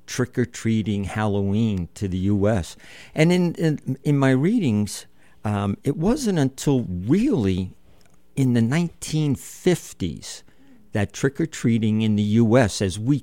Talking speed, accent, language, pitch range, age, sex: 120 wpm, American, English, 100-130 Hz, 50-69, male